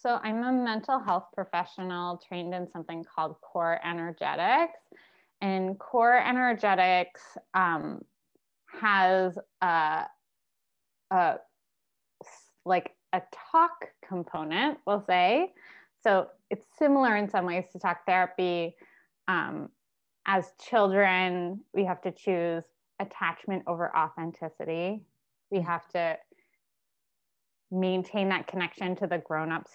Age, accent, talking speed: 20-39, American, 105 wpm